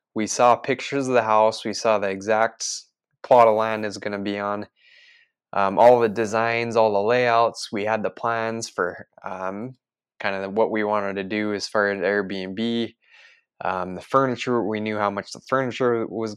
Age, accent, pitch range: 20-39, American, 105-125 Hz